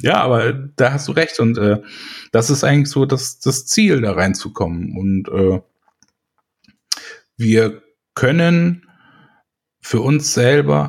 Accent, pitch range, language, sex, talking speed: German, 105-130 Hz, German, male, 130 wpm